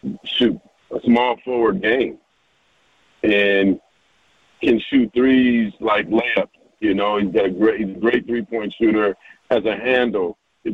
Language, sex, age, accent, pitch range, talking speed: English, male, 40-59, American, 100-115 Hz, 140 wpm